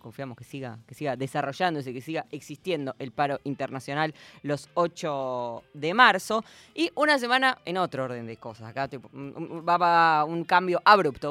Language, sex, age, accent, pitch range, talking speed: Spanish, female, 20-39, Argentinian, 130-170 Hz, 170 wpm